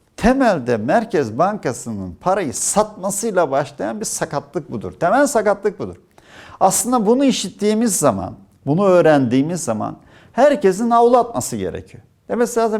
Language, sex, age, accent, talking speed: Turkish, male, 50-69, native, 115 wpm